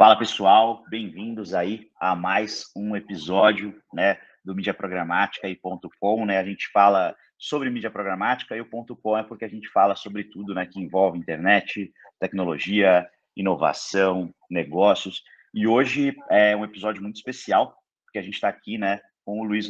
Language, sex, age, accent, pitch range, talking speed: Portuguese, male, 30-49, Brazilian, 95-110 Hz, 165 wpm